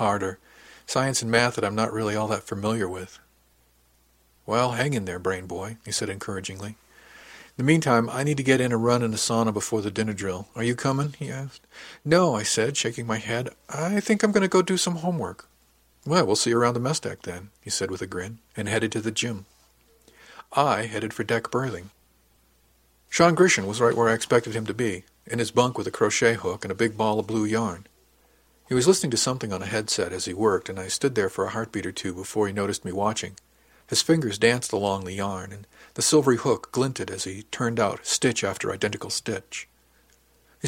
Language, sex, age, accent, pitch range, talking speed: English, male, 50-69, American, 95-125 Hz, 225 wpm